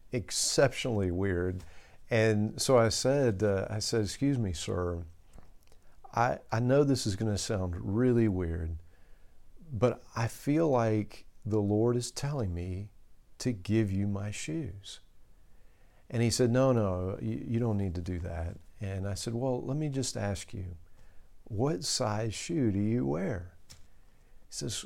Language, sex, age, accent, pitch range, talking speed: English, male, 50-69, American, 90-115 Hz, 155 wpm